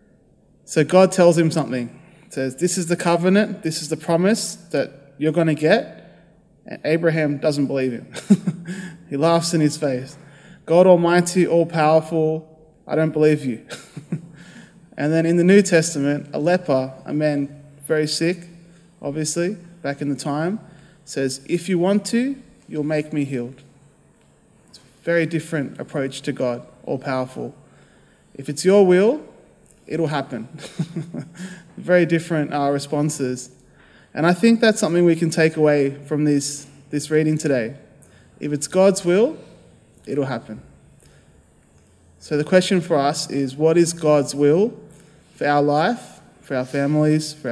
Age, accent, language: 20-39, Australian, English